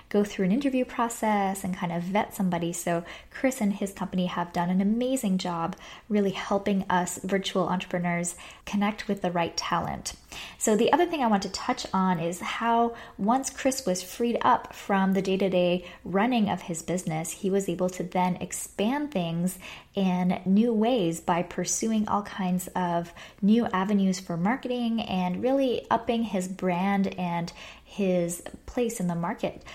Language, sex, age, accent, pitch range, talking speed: English, female, 20-39, American, 180-225 Hz, 165 wpm